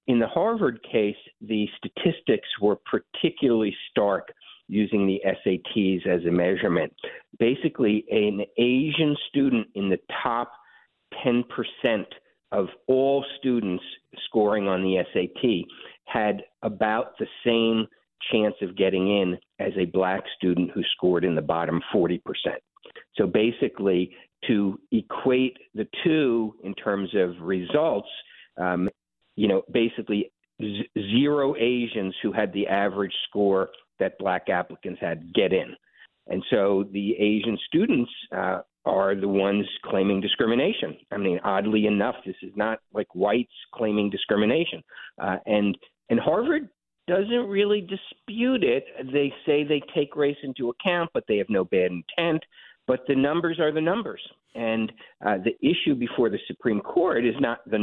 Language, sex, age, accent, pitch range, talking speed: English, male, 50-69, American, 95-140 Hz, 140 wpm